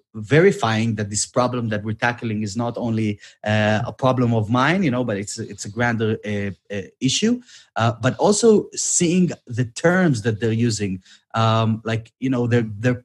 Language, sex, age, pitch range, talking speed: English, male, 30-49, 110-135 Hz, 185 wpm